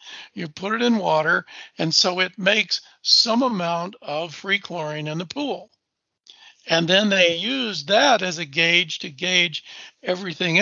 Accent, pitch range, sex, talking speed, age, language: American, 175-230 Hz, male, 160 wpm, 60-79, English